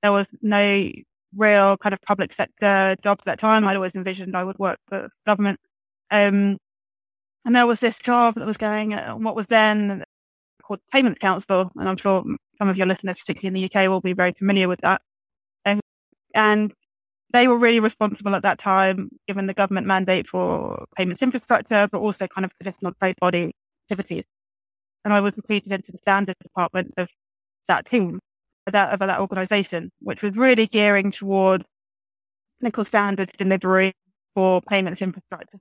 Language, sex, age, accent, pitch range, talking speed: English, female, 20-39, British, 185-215 Hz, 175 wpm